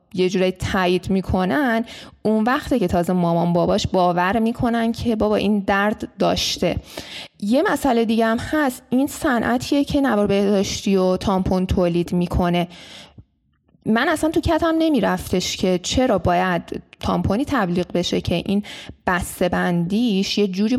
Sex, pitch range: female, 180-230 Hz